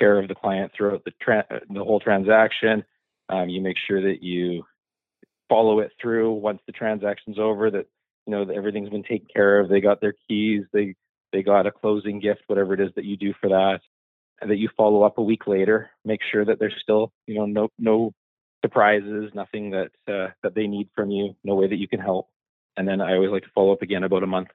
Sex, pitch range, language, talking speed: male, 95-110 Hz, English, 230 wpm